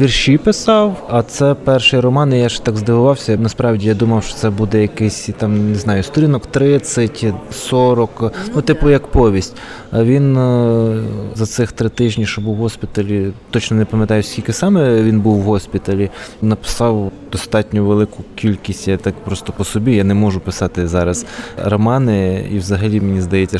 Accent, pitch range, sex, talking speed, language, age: native, 100-120 Hz, male, 165 wpm, Ukrainian, 20-39